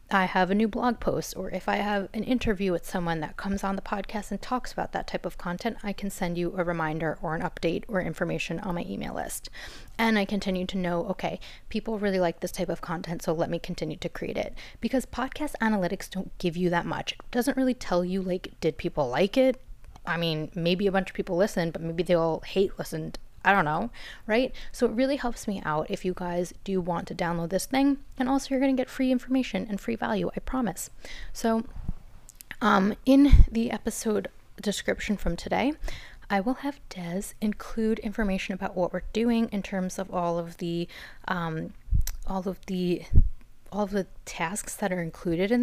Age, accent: 20-39, American